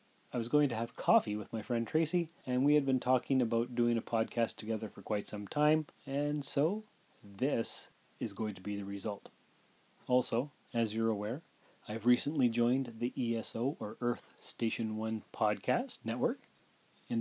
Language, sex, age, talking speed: English, male, 30-49, 170 wpm